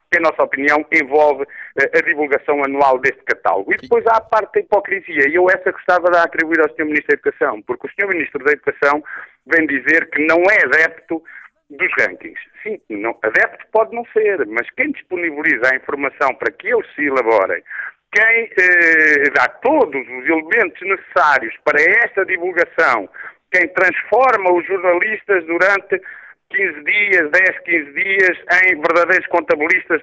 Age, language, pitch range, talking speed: 50-69, Portuguese, 160-220 Hz, 165 wpm